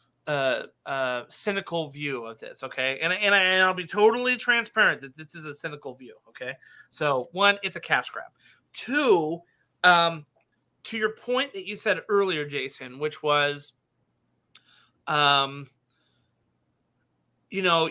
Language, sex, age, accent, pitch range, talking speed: English, male, 30-49, American, 150-195 Hz, 145 wpm